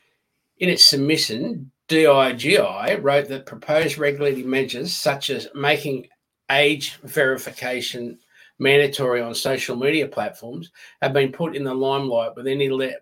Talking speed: 115 wpm